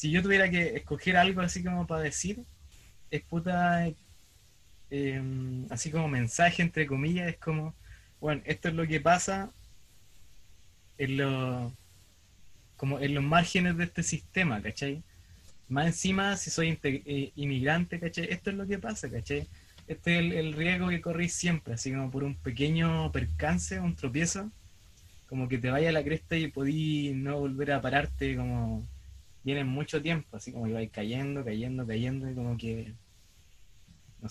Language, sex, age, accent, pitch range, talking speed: Spanish, male, 20-39, Argentinian, 110-160 Hz, 165 wpm